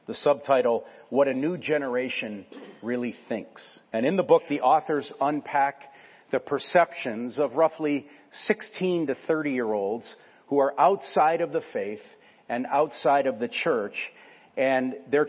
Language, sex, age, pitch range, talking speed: English, male, 40-59, 120-165 Hz, 135 wpm